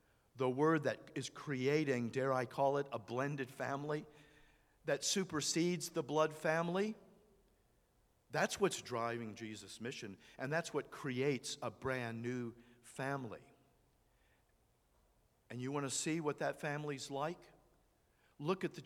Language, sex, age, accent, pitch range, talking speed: English, male, 50-69, American, 115-150 Hz, 135 wpm